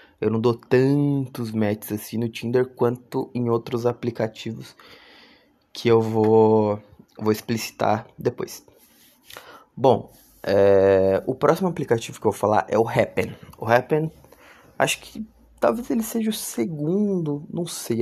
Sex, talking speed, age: male, 135 wpm, 20-39